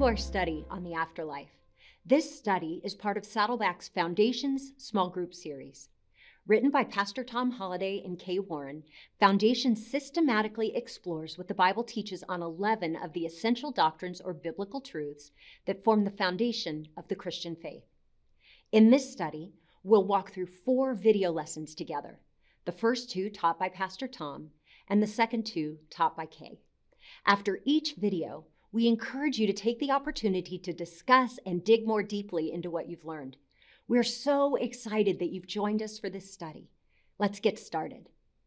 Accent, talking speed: American, 160 wpm